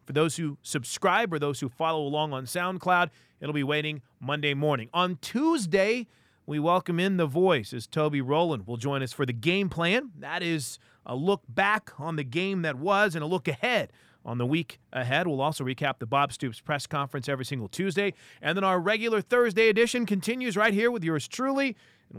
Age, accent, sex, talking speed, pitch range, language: 30-49, American, male, 205 wpm, 130-180 Hz, English